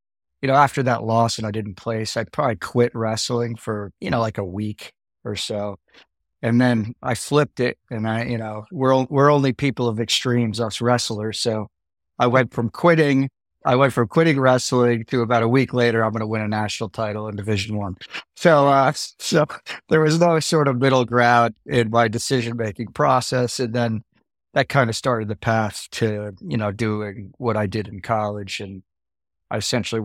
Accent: American